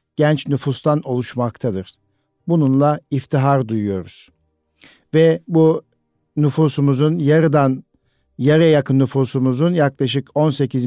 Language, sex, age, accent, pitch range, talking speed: Turkish, male, 50-69, native, 125-155 Hz, 85 wpm